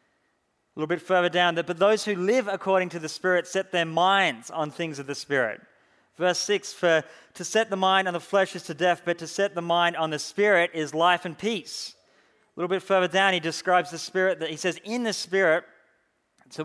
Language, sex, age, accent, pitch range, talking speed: English, male, 30-49, Australian, 160-190 Hz, 225 wpm